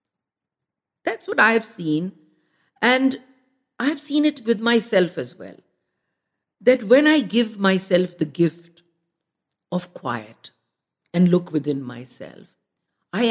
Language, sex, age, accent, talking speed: English, female, 50-69, Indian, 125 wpm